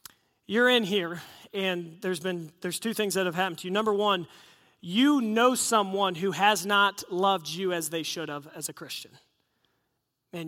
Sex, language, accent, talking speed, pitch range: male, English, American, 185 wpm, 185-230 Hz